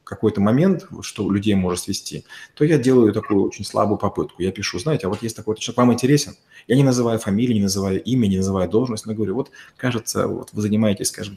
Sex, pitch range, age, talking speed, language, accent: male, 100-135 Hz, 30-49, 215 wpm, Russian, native